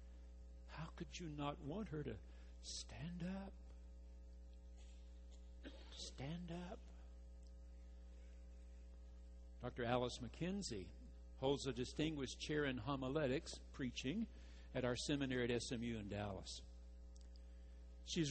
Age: 60-79